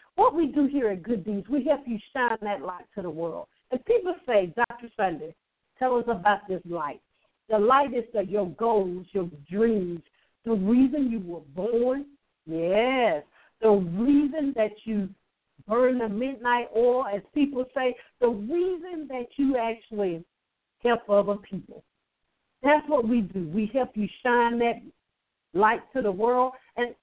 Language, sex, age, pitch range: English, female, 60-79, 200-260 Hz